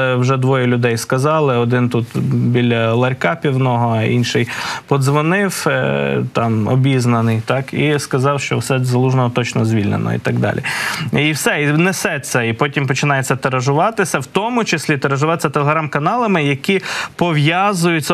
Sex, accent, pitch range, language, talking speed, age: male, native, 130-165 Hz, Ukrainian, 135 wpm, 20-39